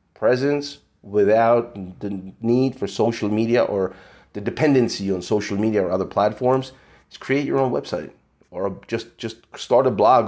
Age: 30-49